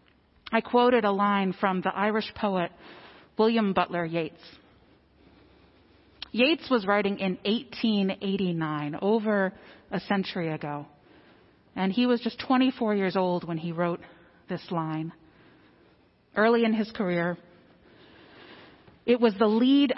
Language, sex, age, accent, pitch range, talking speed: English, female, 40-59, American, 175-230 Hz, 120 wpm